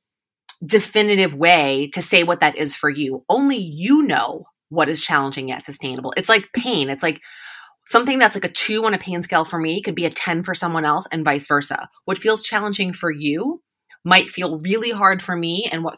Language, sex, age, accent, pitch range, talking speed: English, female, 30-49, American, 150-200 Hz, 210 wpm